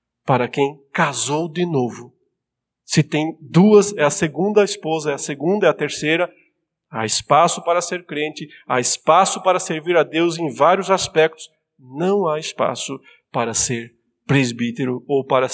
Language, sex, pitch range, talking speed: Portuguese, male, 135-200 Hz, 155 wpm